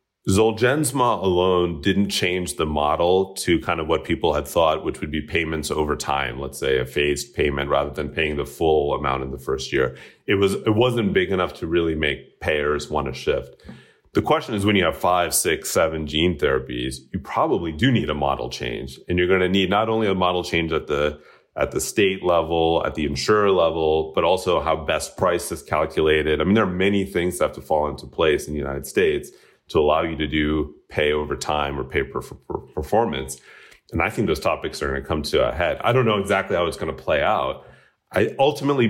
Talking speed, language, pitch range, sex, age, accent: 230 wpm, English, 75-100 Hz, male, 30-49, American